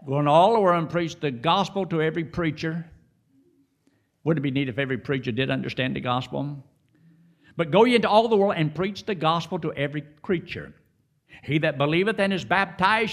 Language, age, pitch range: English, 60-79, 135-175 Hz